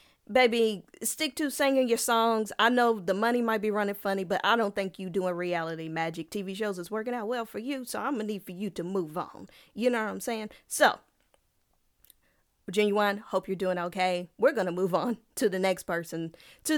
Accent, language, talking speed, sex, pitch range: American, English, 210 wpm, female, 185-240 Hz